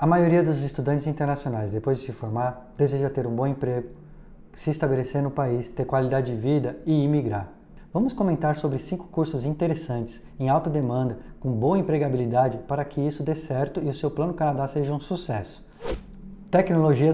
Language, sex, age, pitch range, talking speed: Portuguese, male, 20-39, 135-170 Hz, 175 wpm